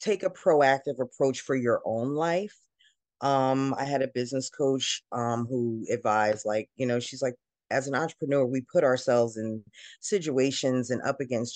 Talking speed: 170 wpm